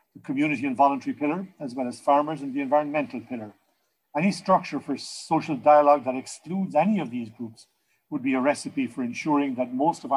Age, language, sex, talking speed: 50-69, English, male, 195 wpm